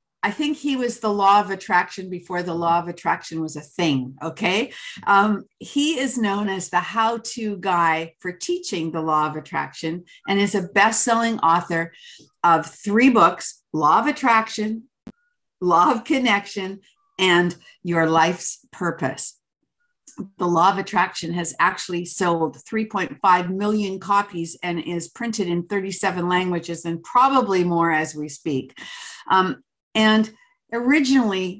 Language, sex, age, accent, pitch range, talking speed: English, female, 50-69, American, 170-220 Hz, 140 wpm